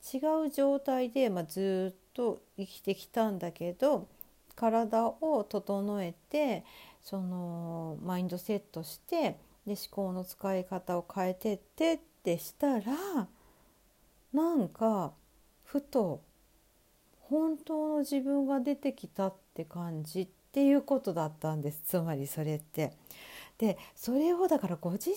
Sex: female